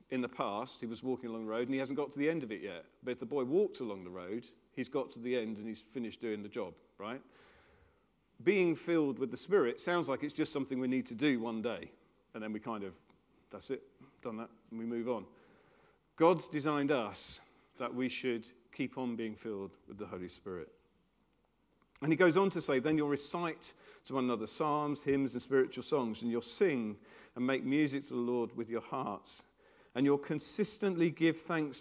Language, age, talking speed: English, 40-59, 220 wpm